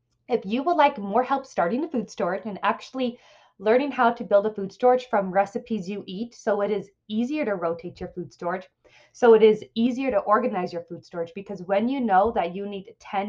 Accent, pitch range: American, 190-235 Hz